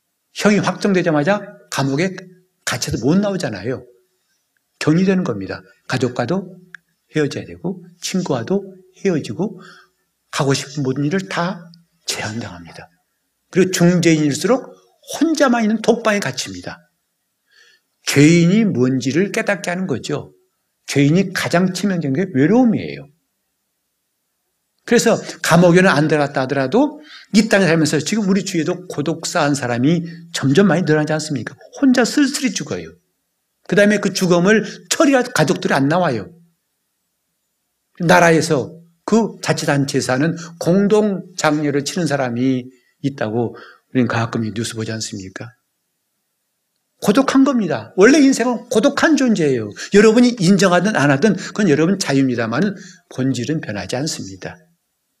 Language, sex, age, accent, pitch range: Korean, male, 60-79, native, 140-200 Hz